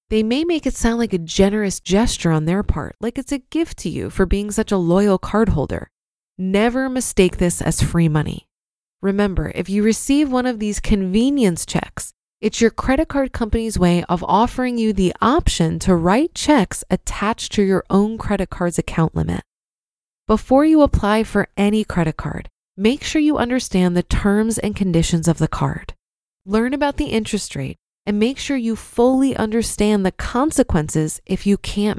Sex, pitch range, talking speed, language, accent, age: female, 170-235 Hz, 180 wpm, English, American, 20-39